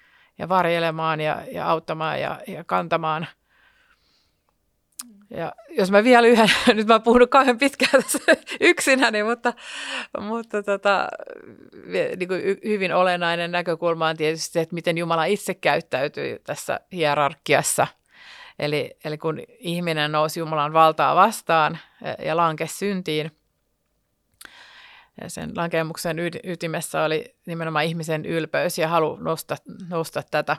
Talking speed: 125 wpm